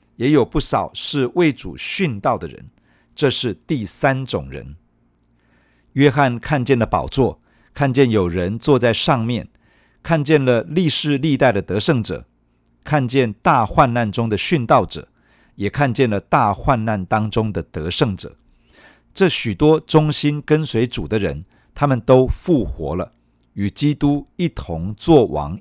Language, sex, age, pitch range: Chinese, male, 50-69, 100-145 Hz